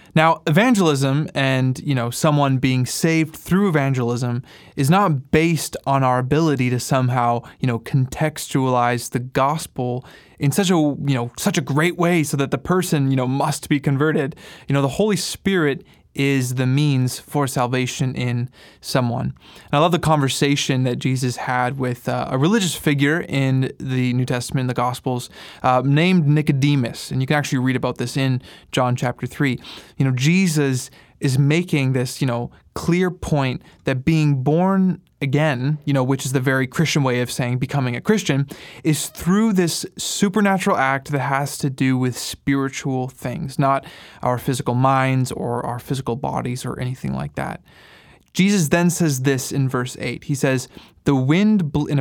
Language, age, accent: English, 20-39, American